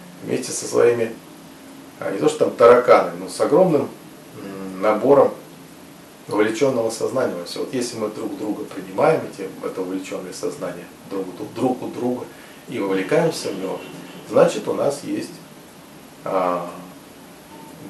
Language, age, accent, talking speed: Russian, 40-59, native, 130 wpm